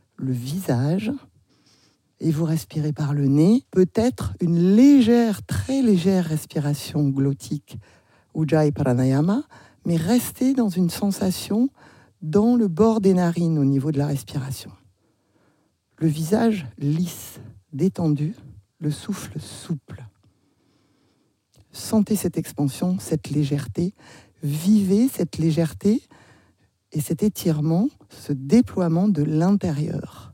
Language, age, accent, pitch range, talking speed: French, 50-69, French, 125-190 Hz, 105 wpm